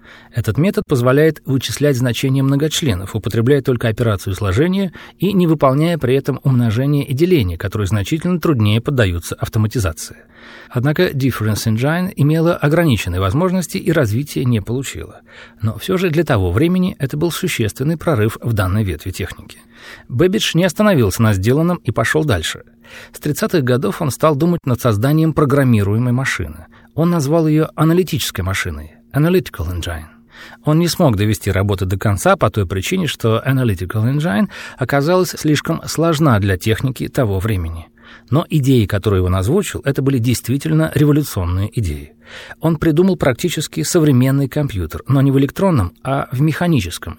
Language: Russian